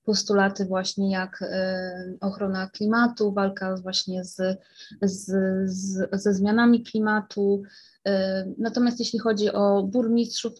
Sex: female